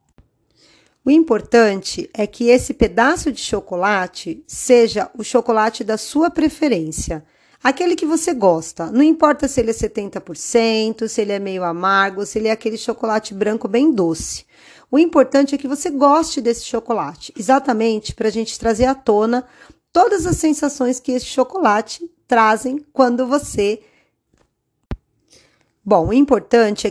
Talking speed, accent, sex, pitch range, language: 145 wpm, Brazilian, female, 215-275 Hz, Portuguese